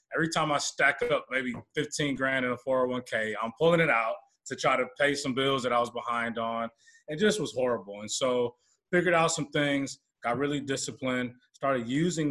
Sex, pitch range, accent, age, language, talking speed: male, 115-140 Hz, American, 20-39, English, 200 wpm